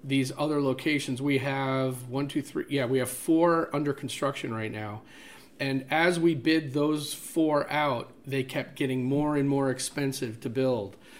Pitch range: 125-150 Hz